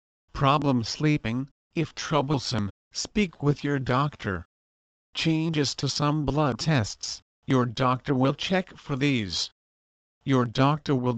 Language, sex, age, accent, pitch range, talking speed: English, male, 50-69, American, 125-155 Hz, 120 wpm